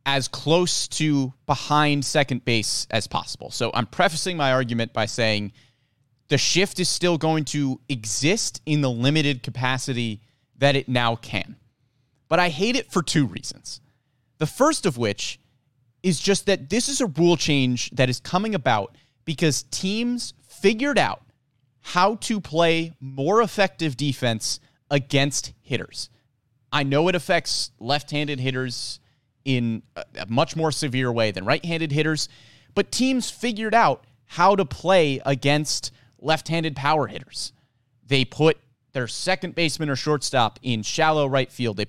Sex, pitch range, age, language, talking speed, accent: male, 125-165 Hz, 30-49, English, 150 wpm, American